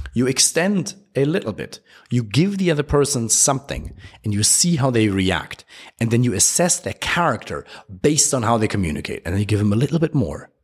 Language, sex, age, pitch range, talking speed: English, male, 30-49, 100-150 Hz, 210 wpm